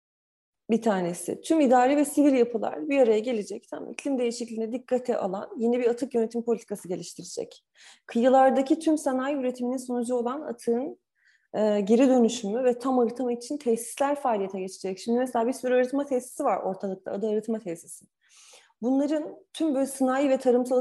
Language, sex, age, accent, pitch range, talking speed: Turkish, female, 30-49, native, 225-260 Hz, 160 wpm